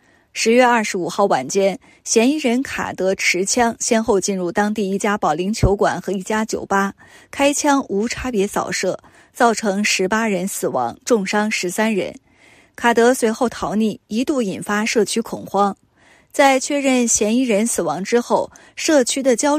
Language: Chinese